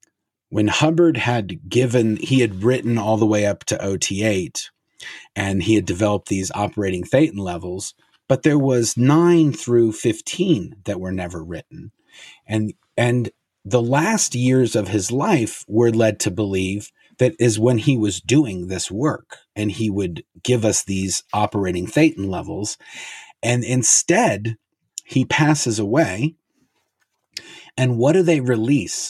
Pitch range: 105-130 Hz